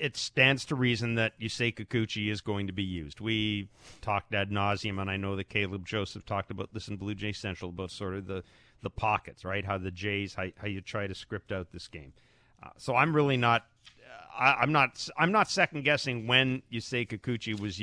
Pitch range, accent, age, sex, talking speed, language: 95-125 Hz, American, 40-59, male, 210 wpm, English